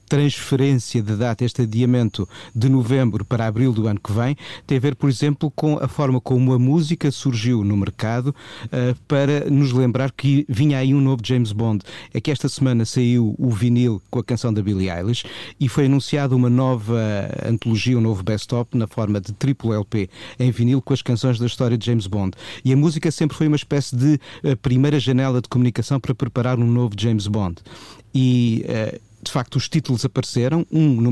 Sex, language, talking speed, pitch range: male, Portuguese, 195 wpm, 110-135 Hz